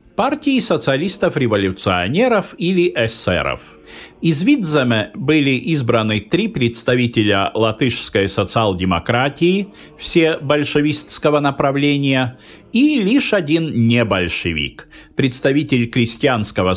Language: Russian